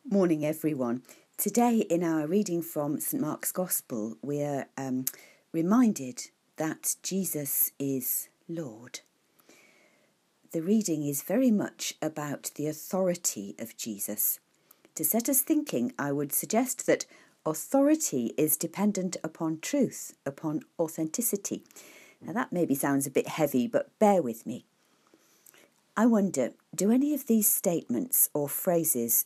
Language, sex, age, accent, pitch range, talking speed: English, female, 50-69, British, 140-205 Hz, 130 wpm